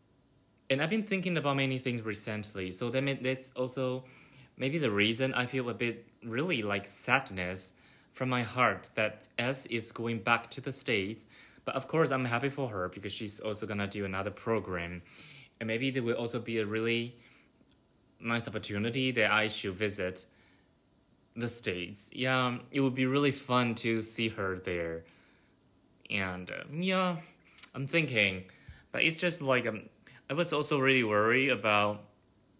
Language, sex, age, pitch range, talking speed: English, male, 20-39, 100-125 Hz, 165 wpm